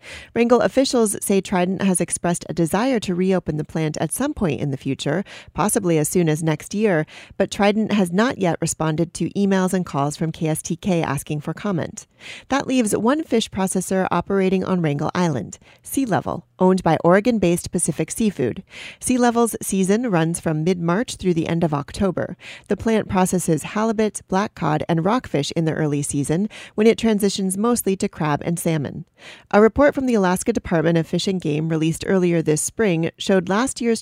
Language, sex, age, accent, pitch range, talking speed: English, female, 40-59, American, 165-205 Hz, 180 wpm